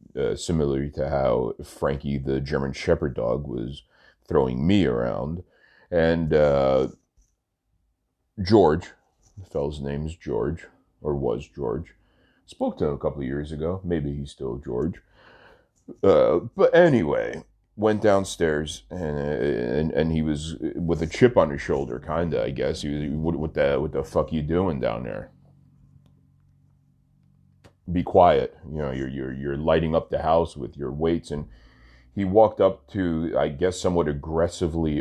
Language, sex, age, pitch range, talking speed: English, male, 30-49, 70-90 Hz, 155 wpm